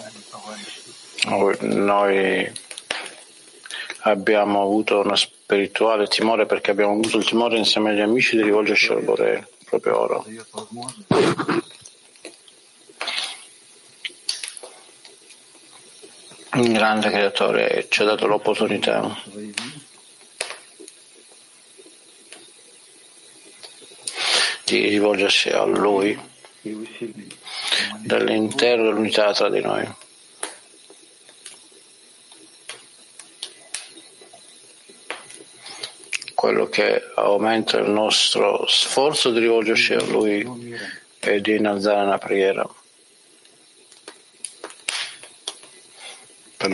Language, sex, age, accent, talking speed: Italian, male, 60-79, native, 65 wpm